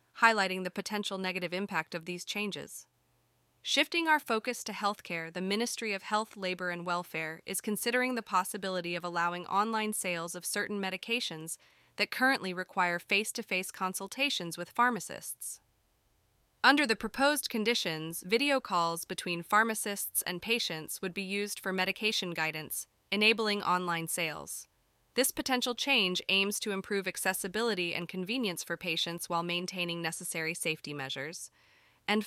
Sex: female